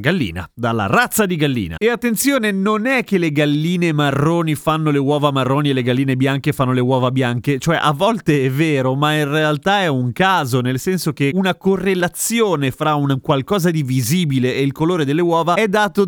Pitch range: 125-190 Hz